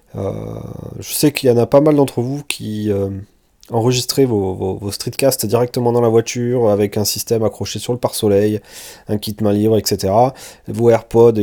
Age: 30-49